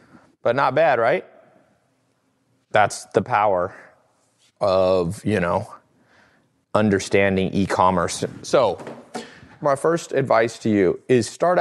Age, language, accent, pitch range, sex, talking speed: 30-49, English, American, 100-135 Hz, male, 105 wpm